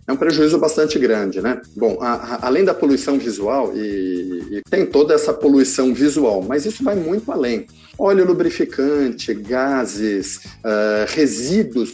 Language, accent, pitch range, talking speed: Portuguese, Brazilian, 115-155 Hz, 135 wpm